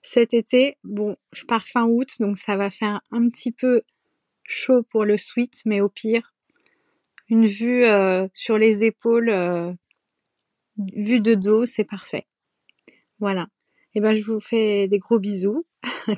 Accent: French